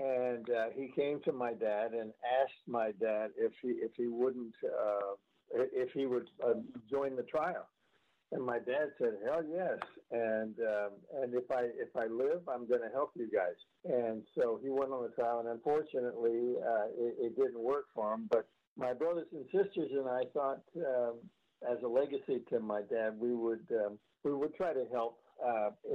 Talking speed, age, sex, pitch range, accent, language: 195 wpm, 60-79, male, 115-155 Hz, American, English